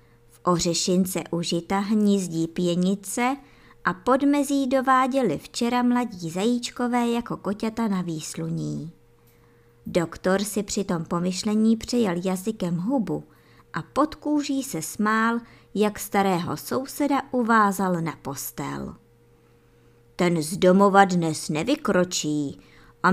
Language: Czech